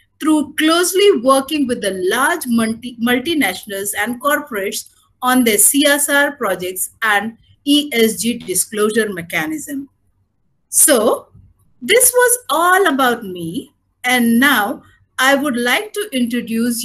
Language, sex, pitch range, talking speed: English, female, 210-285 Hz, 105 wpm